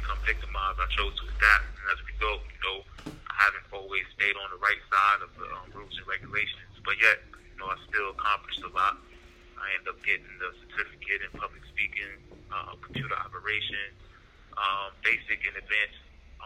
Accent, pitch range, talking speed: American, 80-100 Hz, 185 wpm